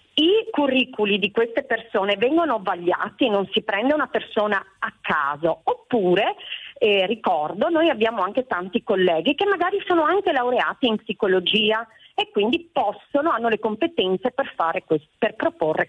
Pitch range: 200-290 Hz